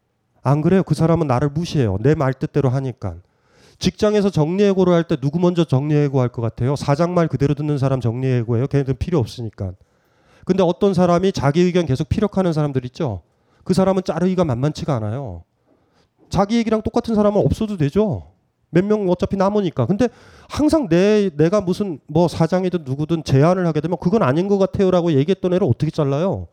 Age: 30-49